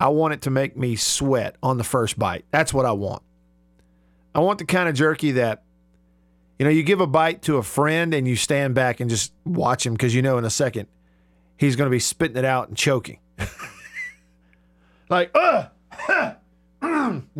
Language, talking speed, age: English, 190 wpm, 50-69